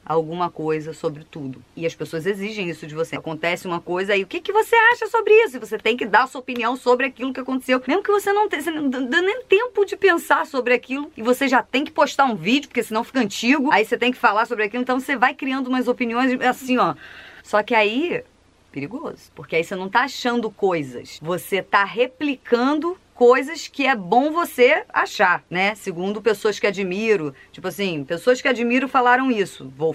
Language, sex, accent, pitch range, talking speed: Portuguese, female, Brazilian, 190-260 Hz, 215 wpm